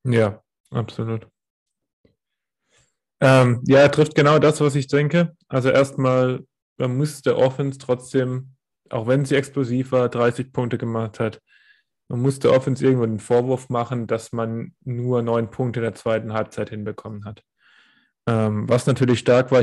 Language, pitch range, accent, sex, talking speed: German, 110-130 Hz, German, male, 150 wpm